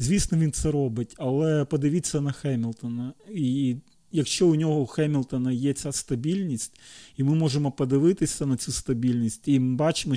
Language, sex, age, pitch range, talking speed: Ukrainian, male, 40-59, 130-155 Hz, 160 wpm